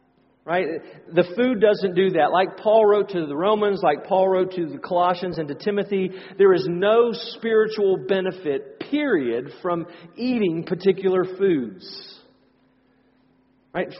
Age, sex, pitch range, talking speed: 40-59, male, 175-215 Hz, 135 wpm